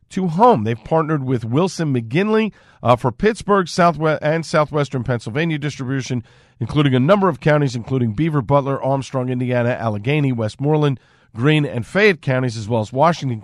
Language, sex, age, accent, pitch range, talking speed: English, male, 50-69, American, 120-160 Hz, 155 wpm